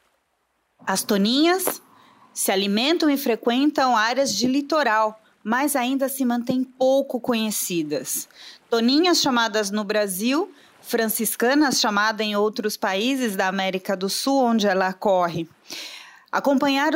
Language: Portuguese